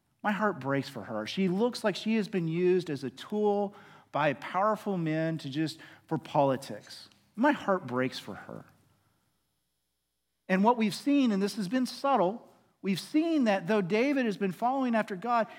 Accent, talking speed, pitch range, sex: American, 175 wpm, 140-215 Hz, male